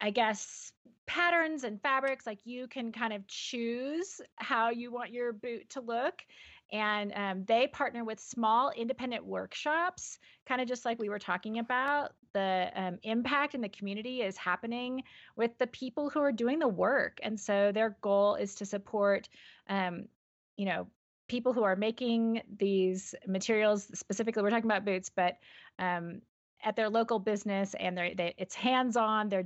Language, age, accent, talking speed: English, 30-49, American, 165 wpm